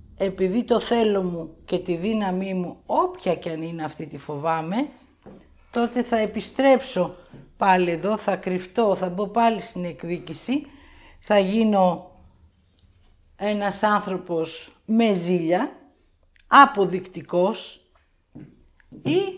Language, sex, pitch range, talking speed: Greek, female, 180-235 Hz, 110 wpm